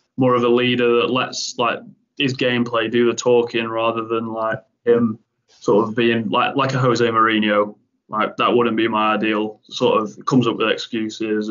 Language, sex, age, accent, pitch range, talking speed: English, male, 20-39, British, 110-120 Hz, 190 wpm